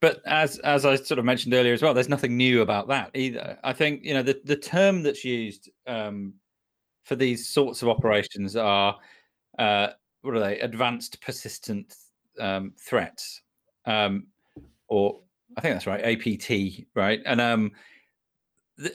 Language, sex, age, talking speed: English, male, 40-59, 160 wpm